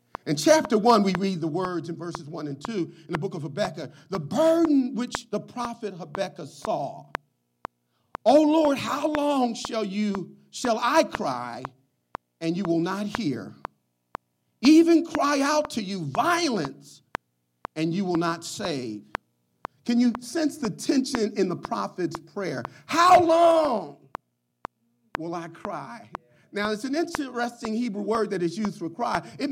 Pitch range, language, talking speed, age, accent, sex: 145-240 Hz, English, 155 wpm, 40-59, American, male